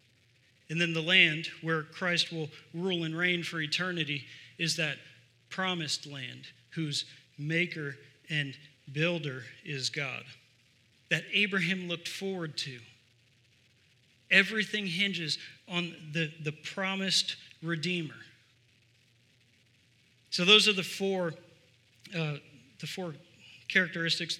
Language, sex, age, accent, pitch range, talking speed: English, male, 40-59, American, 140-185 Hz, 105 wpm